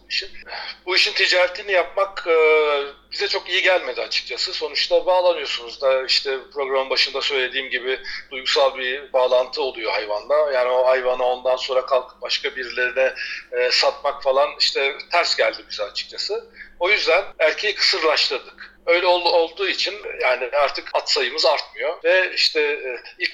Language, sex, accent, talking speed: Turkish, male, native, 135 wpm